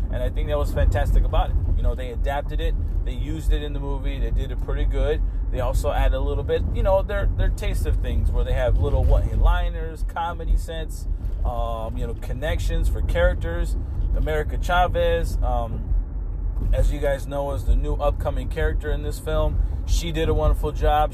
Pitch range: 80-95 Hz